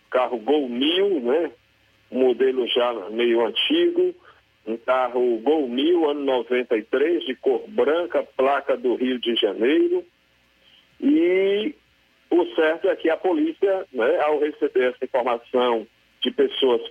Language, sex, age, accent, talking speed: Portuguese, male, 50-69, Brazilian, 130 wpm